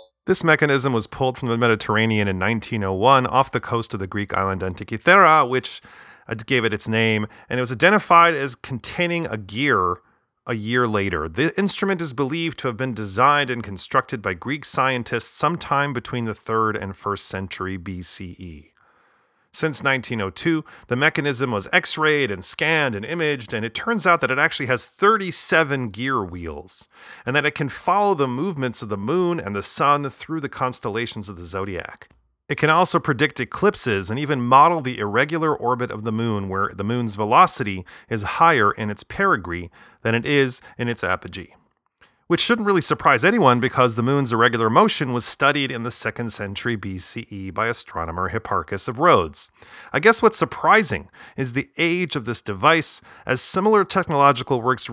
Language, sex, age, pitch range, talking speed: English, male, 30-49, 110-150 Hz, 175 wpm